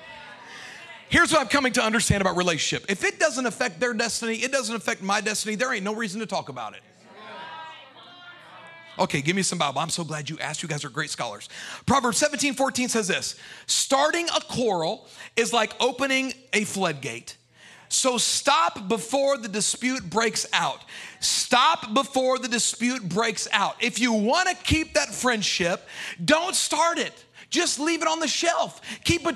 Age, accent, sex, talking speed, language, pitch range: 40-59, American, male, 175 wpm, English, 220-300 Hz